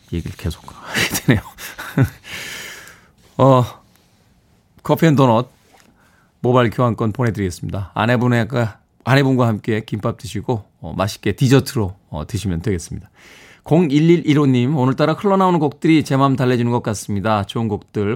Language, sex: Korean, male